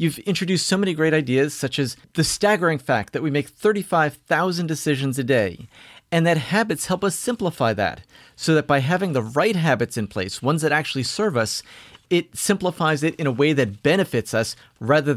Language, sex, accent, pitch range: English, male, American, 130-170 Hz